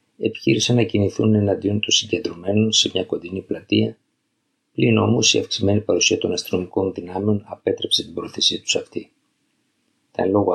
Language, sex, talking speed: Greek, male, 140 wpm